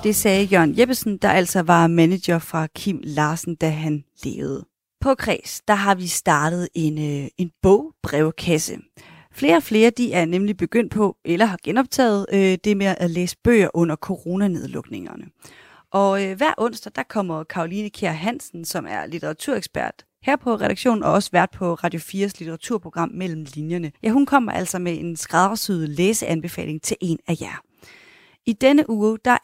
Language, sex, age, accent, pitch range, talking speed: Danish, female, 30-49, native, 170-215 Hz, 170 wpm